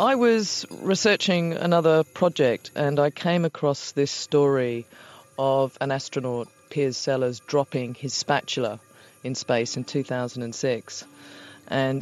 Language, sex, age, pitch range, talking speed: English, female, 30-49, 130-165 Hz, 120 wpm